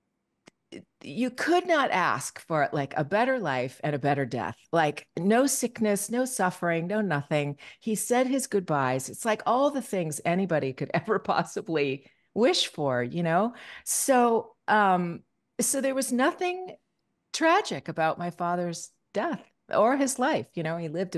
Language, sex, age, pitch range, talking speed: English, female, 40-59, 135-200 Hz, 155 wpm